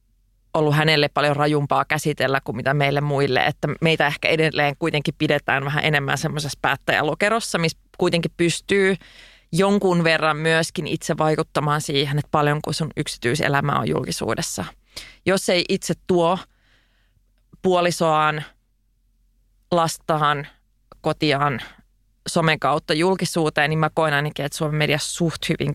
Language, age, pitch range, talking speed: Finnish, 30-49, 145-175 Hz, 125 wpm